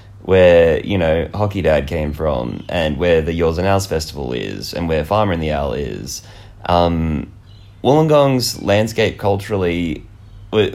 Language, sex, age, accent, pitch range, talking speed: English, male, 20-39, Australian, 85-100 Hz, 150 wpm